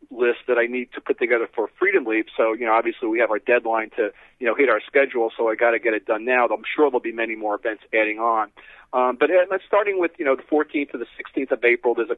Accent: American